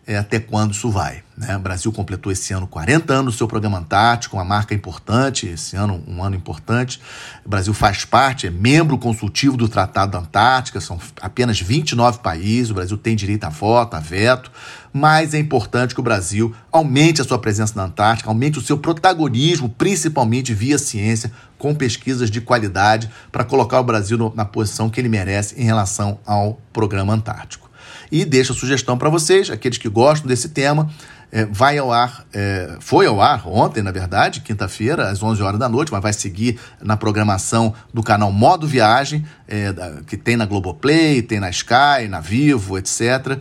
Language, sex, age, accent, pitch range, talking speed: Portuguese, male, 40-59, Brazilian, 105-130 Hz, 185 wpm